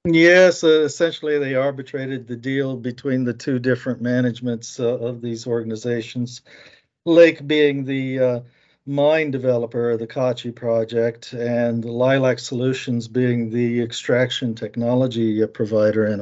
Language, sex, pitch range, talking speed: English, male, 110-125 Hz, 135 wpm